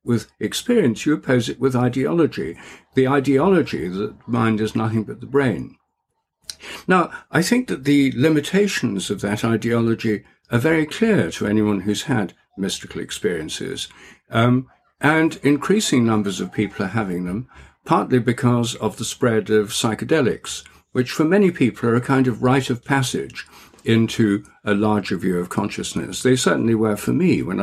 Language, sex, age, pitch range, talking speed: English, male, 60-79, 105-135 Hz, 160 wpm